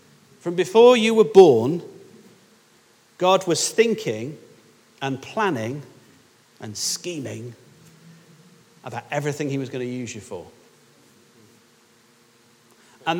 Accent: British